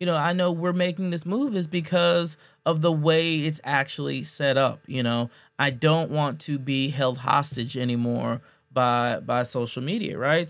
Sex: male